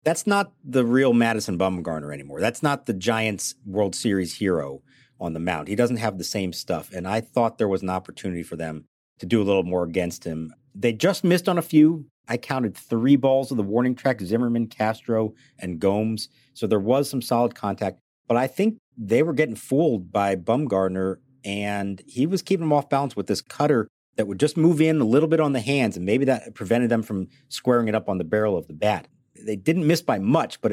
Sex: male